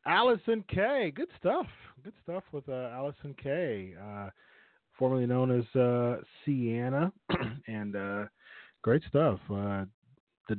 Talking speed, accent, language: 125 wpm, American, English